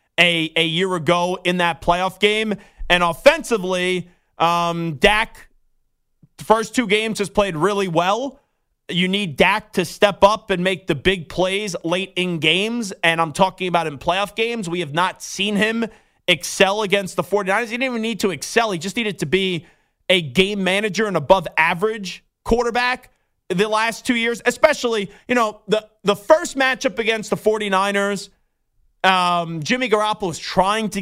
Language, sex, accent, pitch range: English, male, American, 170-210 Hz